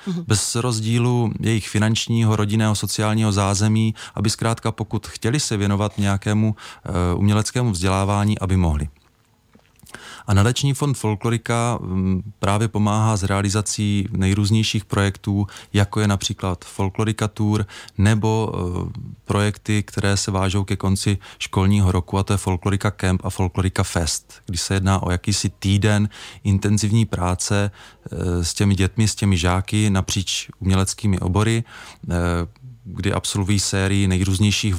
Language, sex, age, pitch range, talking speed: Czech, male, 20-39, 95-105 Hz, 130 wpm